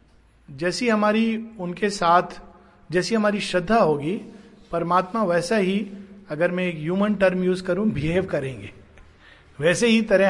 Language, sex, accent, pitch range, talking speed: Hindi, male, native, 155-205 Hz, 135 wpm